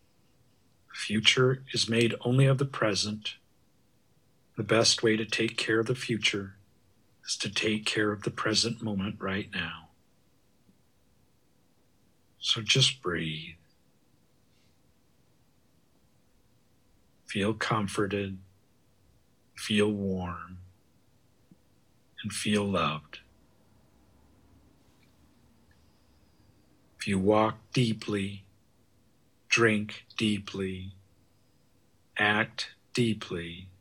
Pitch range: 100-120 Hz